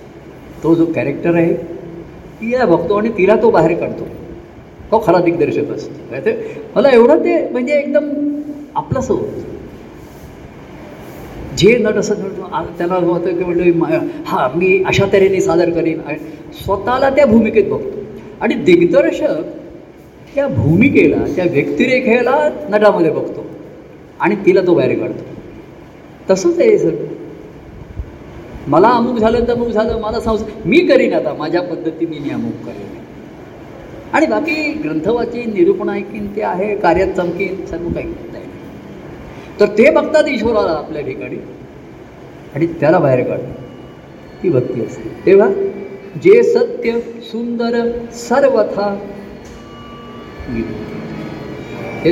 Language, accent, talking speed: Marathi, native, 125 wpm